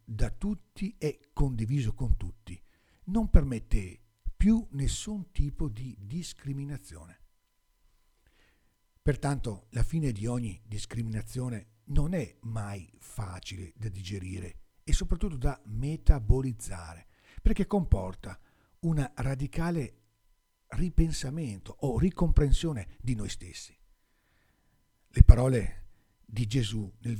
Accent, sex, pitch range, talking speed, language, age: native, male, 100-145 Hz, 95 wpm, Italian, 50-69